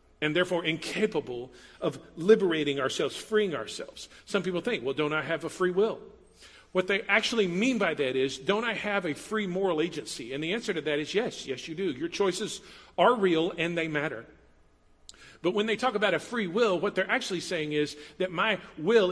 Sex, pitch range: male, 145-205 Hz